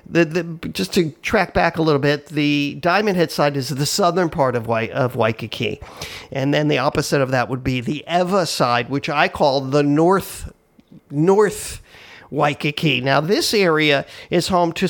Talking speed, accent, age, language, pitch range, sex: 180 wpm, American, 50-69, English, 135-175 Hz, male